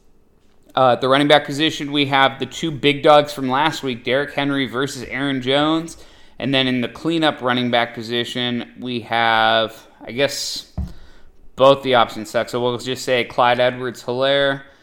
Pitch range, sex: 110-130 Hz, male